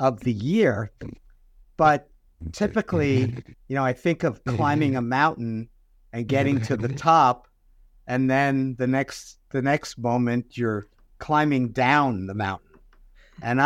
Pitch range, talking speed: 110-145 Hz, 135 wpm